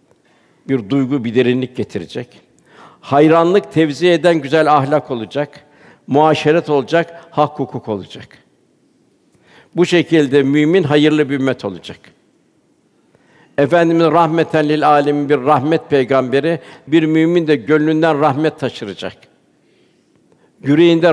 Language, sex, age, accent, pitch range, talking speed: Turkish, male, 60-79, native, 140-160 Hz, 105 wpm